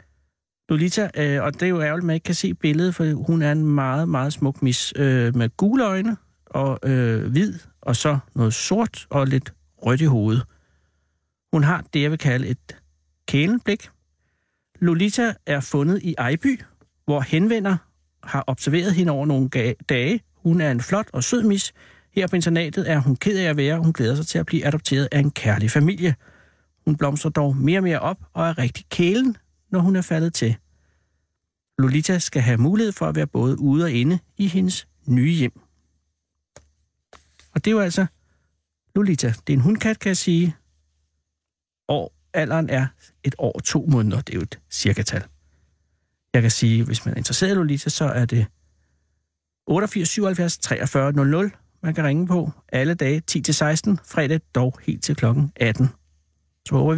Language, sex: Danish, male